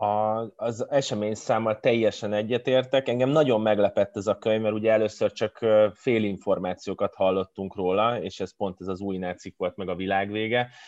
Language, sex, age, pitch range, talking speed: Hungarian, male, 20-39, 95-110 Hz, 165 wpm